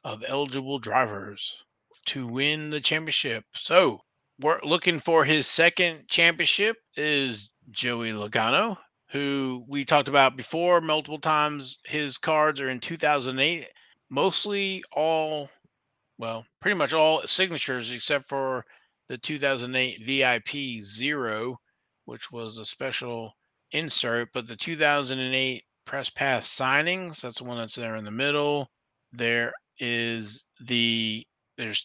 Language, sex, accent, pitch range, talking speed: English, male, American, 120-145 Hz, 120 wpm